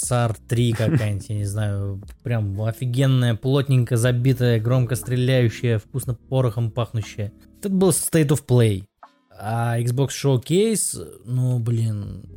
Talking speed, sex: 120 wpm, male